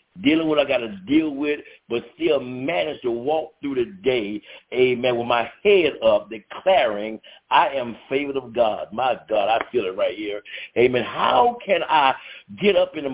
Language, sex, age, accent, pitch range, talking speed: English, male, 50-69, American, 140-195 Hz, 185 wpm